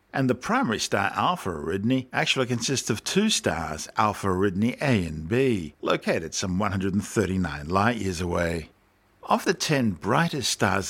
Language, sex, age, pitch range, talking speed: English, male, 60-79, 95-125 Hz, 150 wpm